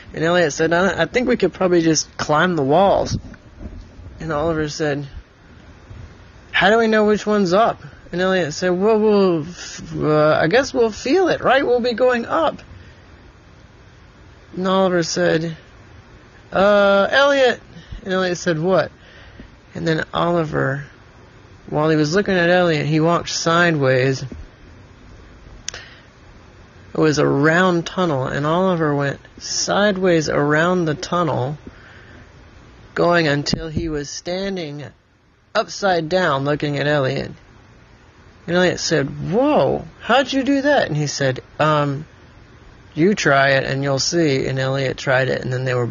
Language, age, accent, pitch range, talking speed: English, 30-49, American, 130-185 Hz, 140 wpm